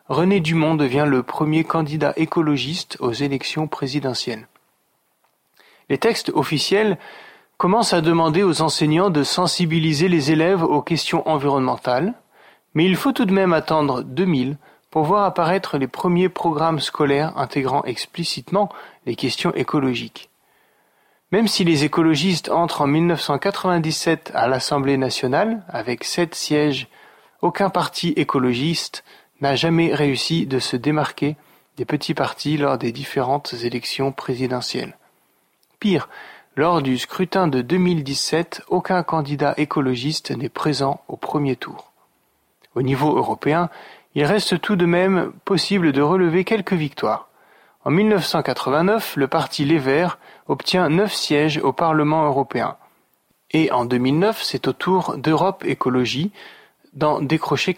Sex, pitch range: male, 140-180 Hz